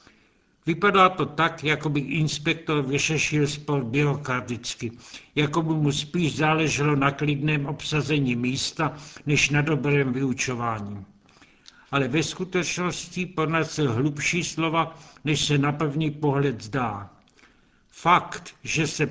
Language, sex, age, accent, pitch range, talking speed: Czech, male, 70-89, native, 140-160 Hz, 120 wpm